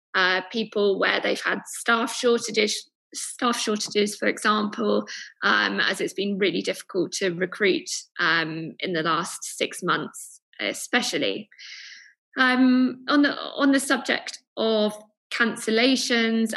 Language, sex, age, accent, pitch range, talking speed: English, female, 20-39, British, 190-235 Hz, 125 wpm